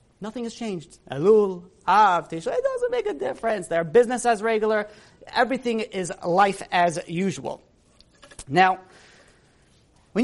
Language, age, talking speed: English, 30-49, 125 wpm